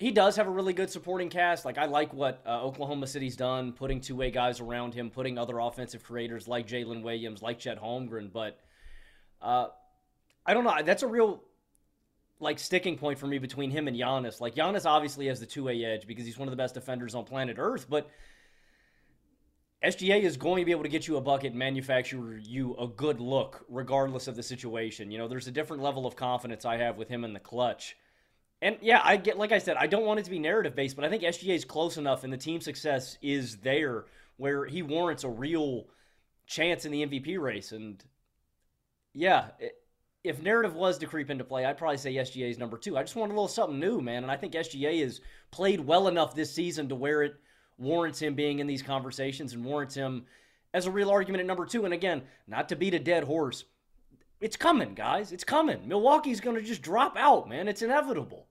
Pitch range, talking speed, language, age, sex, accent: 125-175 Hz, 220 wpm, English, 20-39, male, American